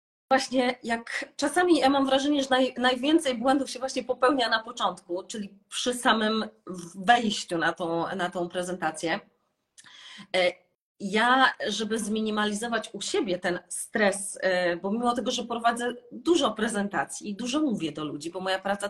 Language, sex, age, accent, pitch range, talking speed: Polish, female, 30-49, native, 200-260 Hz, 145 wpm